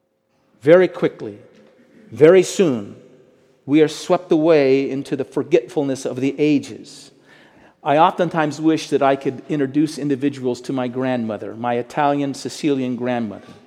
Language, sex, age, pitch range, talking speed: English, male, 40-59, 140-185 Hz, 125 wpm